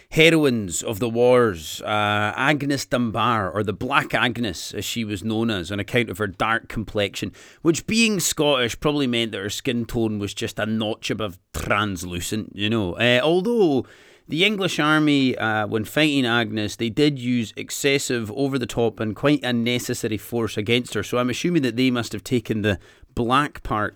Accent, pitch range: British, 105-140 Hz